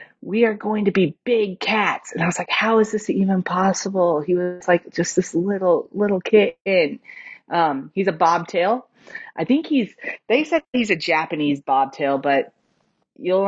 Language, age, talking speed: English, 30-49, 175 wpm